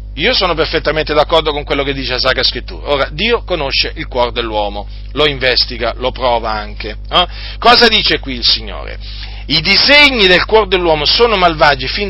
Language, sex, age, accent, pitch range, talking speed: Italian, male, 40-59, native, 125-180 Hz, 180 wpm